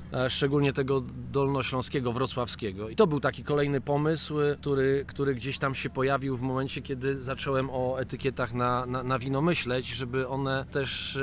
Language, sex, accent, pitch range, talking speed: Polish, male, native, 115-145 Hz, 160 wpm